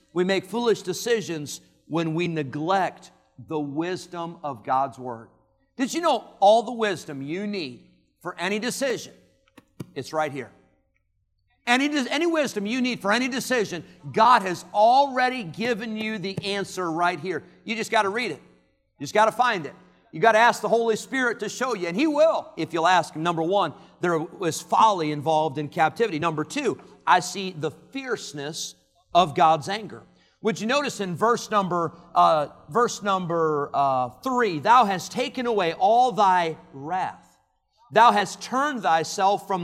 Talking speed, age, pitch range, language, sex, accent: 170 wpm, 50-69, 160-235 Hz, English, male, American